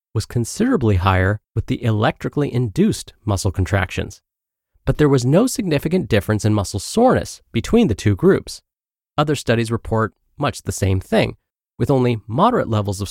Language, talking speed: English, 150 wpm